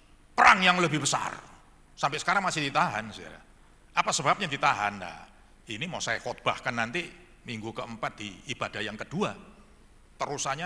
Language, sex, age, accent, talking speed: Indonesian, male, 50-69, native, 140 wpm